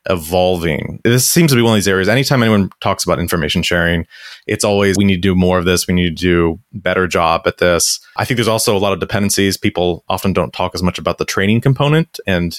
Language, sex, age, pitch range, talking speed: English, male, 30-49, 90-110 Hz, 250 wpm